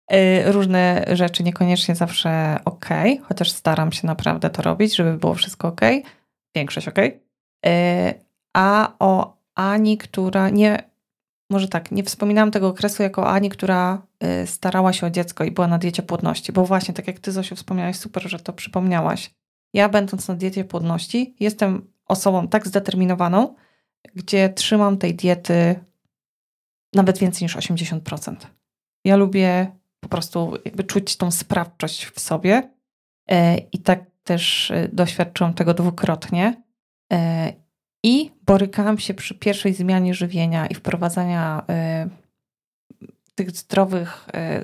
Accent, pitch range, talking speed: native, 175-200 Hz, 130 wpm